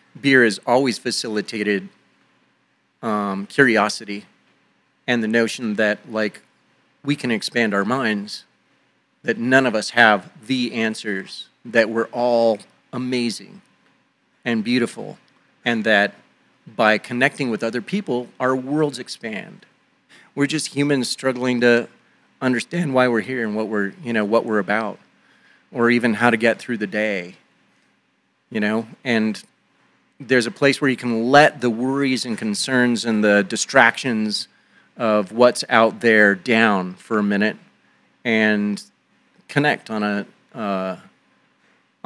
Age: 40-59